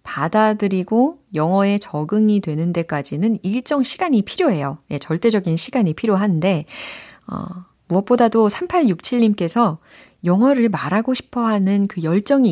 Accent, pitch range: native, 170-255 Hz